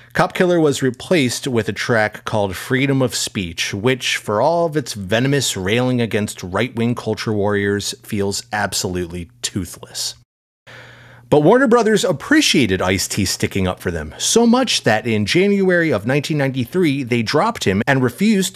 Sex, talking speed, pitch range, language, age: male, 150 wpm, 100-130 Hz, English, 30-49